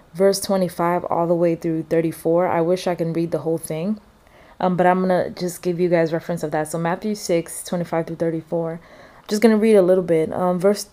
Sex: female